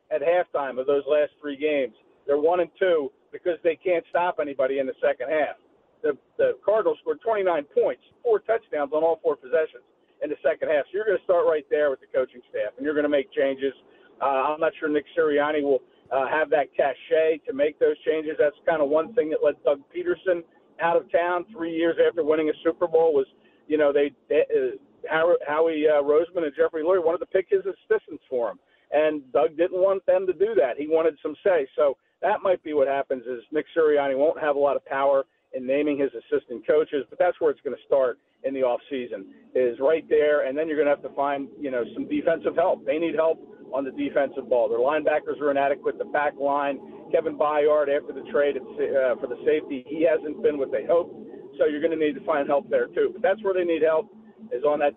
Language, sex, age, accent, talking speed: English, male, 50-69, American, 230 wpm